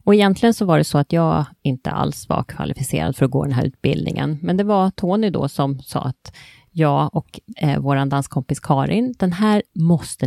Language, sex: Swedish, female